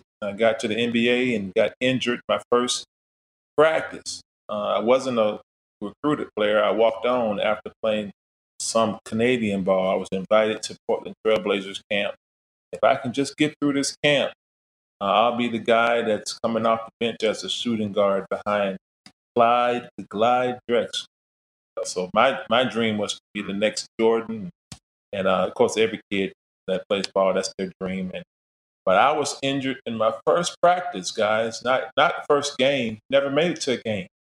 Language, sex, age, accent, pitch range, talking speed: English, male, 30-49, American, 100-130 Hz, 175 wpm